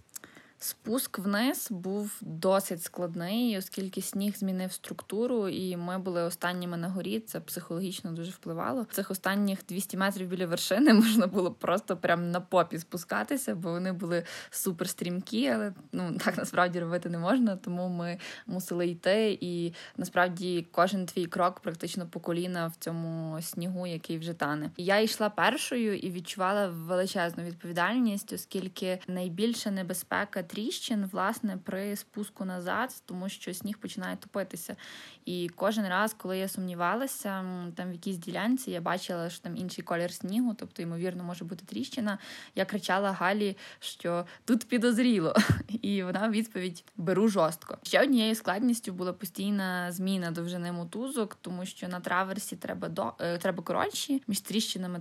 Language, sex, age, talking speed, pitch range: Ukrainian, female, 20-39, 150 wpm, 175-210 Hz